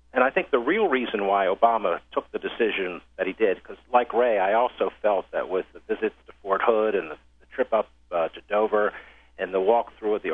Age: 50-69